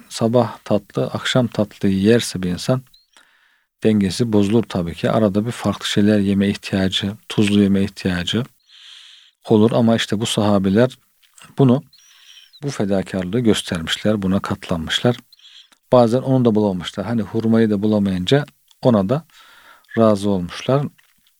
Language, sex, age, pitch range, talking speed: Turkish, male, 50-69, 100-130 Hz, 120 wpm